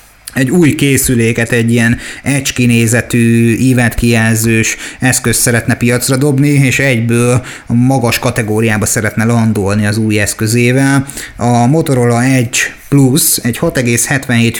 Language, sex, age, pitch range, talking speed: Hungarian, male, 30-49, 120-140 Hz, 110 wpm